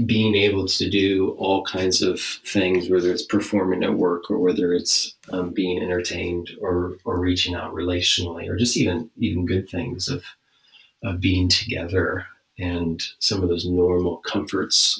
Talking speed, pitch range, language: 160 wpm, 90-110 Hz, English